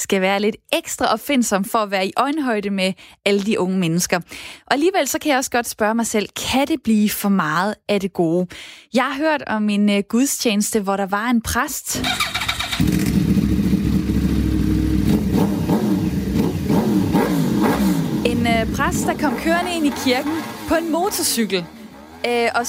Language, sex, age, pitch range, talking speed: Danish, female, 20-39, 210-265 Hz, 150 wpm